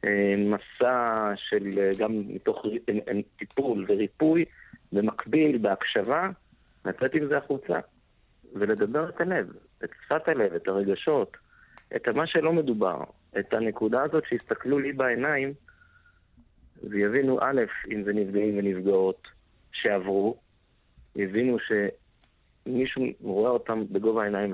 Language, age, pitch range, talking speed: Hebrew, 50-69, 95-120 Hz, 110 wpm